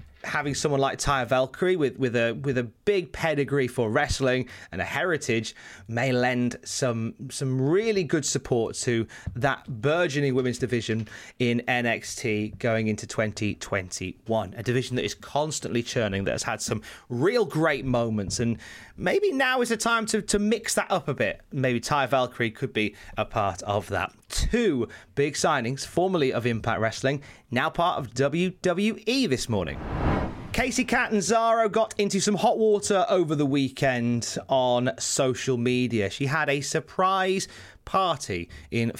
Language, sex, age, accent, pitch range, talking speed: English, male, 30-49, British, 115-150 Hz, 155 wpm